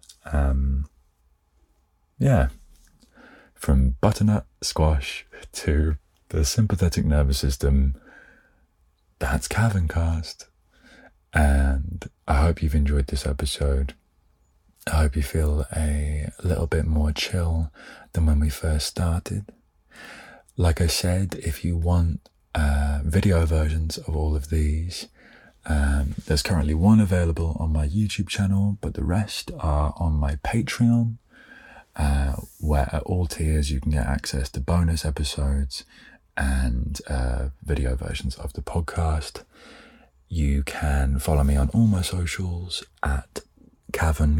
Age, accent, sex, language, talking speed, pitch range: 20-39, British, male, English, 125 wpm, 75-90 Hz